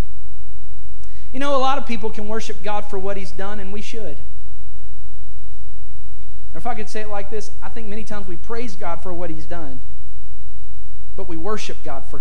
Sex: male